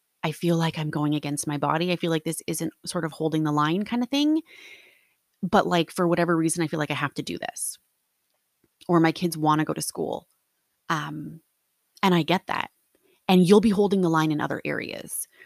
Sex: female